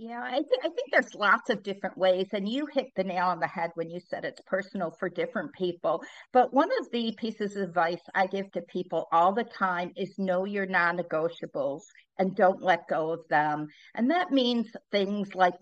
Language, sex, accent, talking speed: English, female, American, 210 wpm